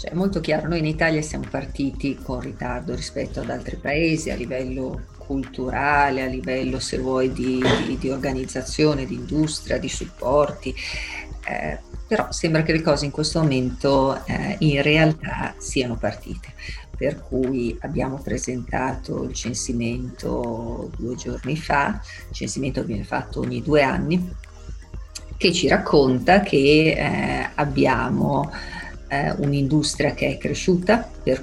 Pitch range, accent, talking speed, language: 125-145 Hz, native, 135 wpm, Italian